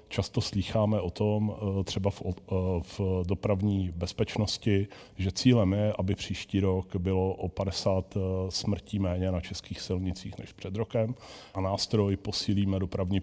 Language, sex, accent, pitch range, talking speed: Czech, male, native, 95-110 Hz, 130 wpm